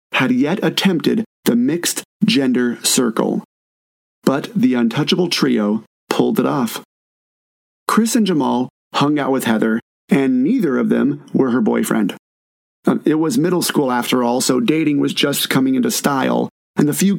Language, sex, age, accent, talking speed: English, male, 30-49, American, 150 wpm